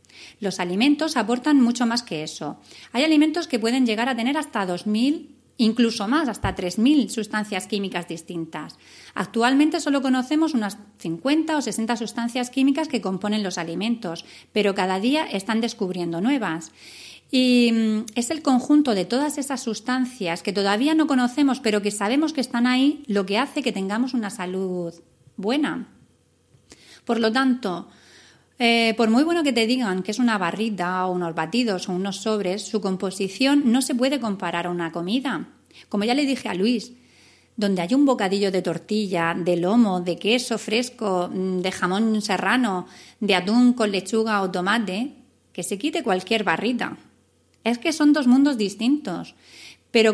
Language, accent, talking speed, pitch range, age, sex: Spanish, Spanish, 160 wpm, 190-255 Hz, 30-49, female